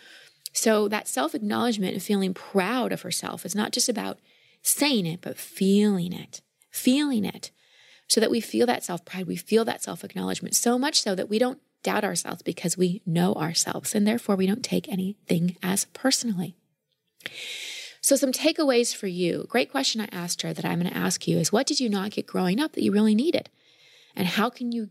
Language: English